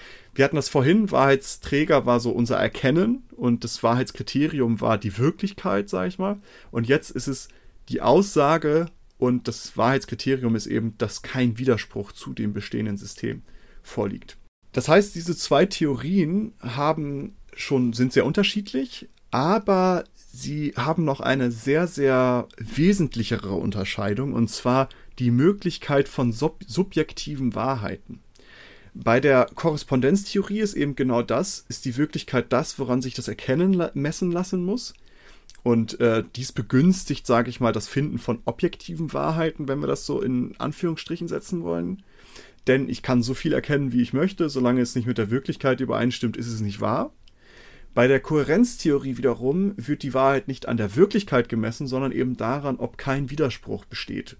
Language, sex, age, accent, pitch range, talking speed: German, male, 30-49, German, 120-155 Hz, 155 wpm